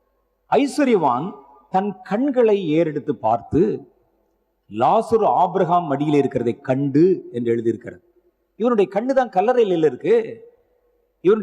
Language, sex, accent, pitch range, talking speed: Tamil, male, native, 195-305 Hz, 60 wpm